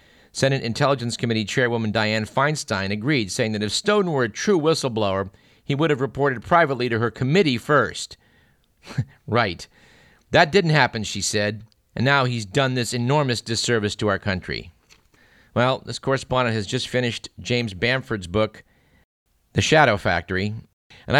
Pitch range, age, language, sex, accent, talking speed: 100-130 Hz, 50-69, English, male, American, 150 wpm